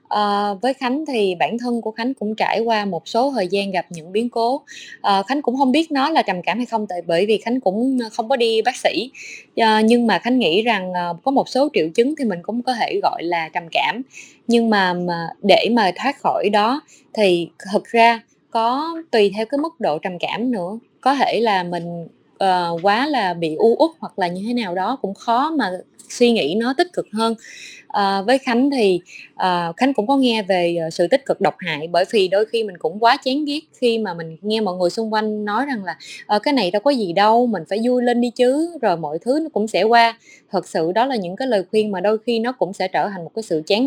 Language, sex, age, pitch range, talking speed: Vietnamese, female, 20-39, 190-250 Hz, 245 wpm